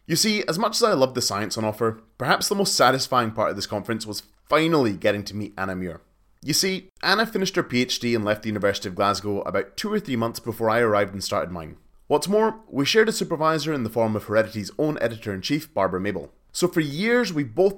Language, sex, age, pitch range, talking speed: English, male, 20-39, 105-155 Hz, 235 wpm